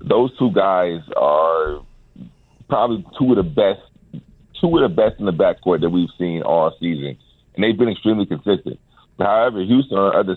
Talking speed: 185 wpm